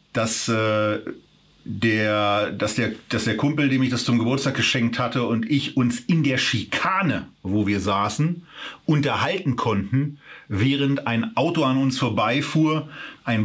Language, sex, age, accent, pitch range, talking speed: German, male, 40-59, German, 115-145 Hz, 130 wpm